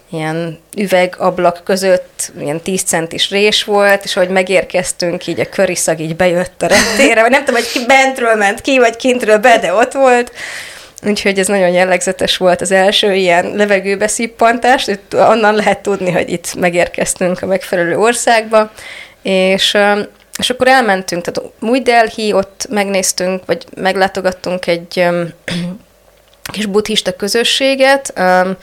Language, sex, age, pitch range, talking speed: Hungarian, female, 30-49, 175-205 Hz, 140 wpm